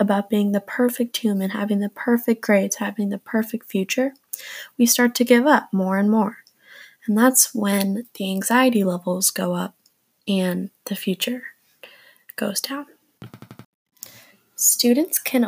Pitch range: 195-240 Hz